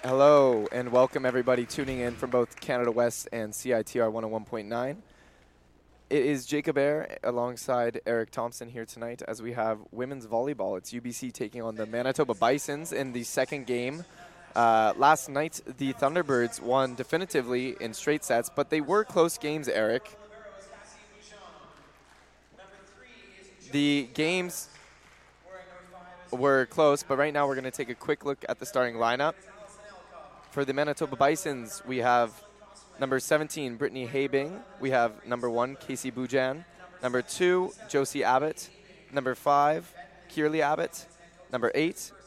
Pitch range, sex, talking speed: 125-160 Hz, male, 140 wpm